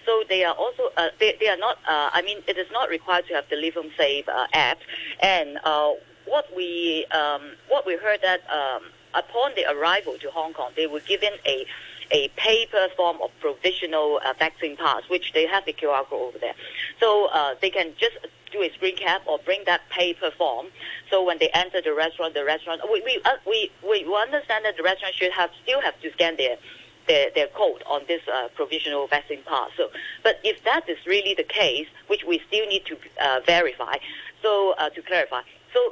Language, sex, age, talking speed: English, female, 50-69, 210 wpm